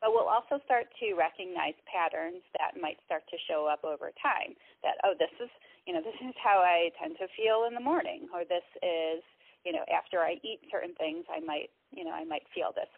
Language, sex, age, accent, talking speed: English, female, 30-49, American, 225 wpm